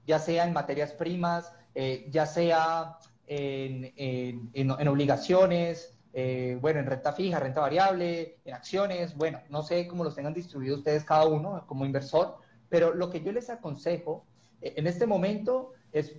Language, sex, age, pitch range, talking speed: Spanish, male, 30-49, 145-195 Hz, 165 wpm